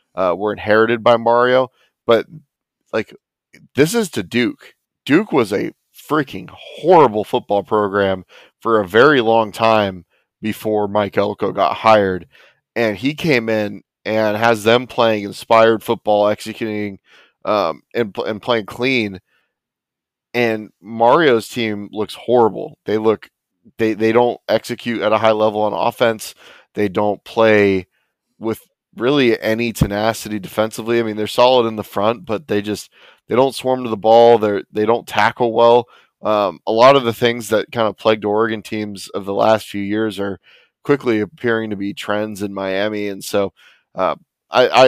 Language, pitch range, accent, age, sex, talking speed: English, 100-115 Hz, American, 20-39, male, 160 wpm